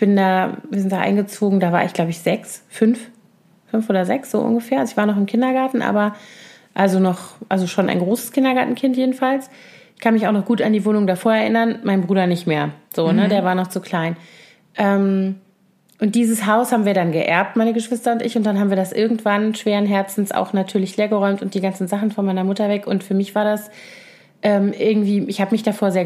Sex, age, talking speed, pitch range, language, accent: female, 30-49, 225 wpm, 190-225 Hz, German, German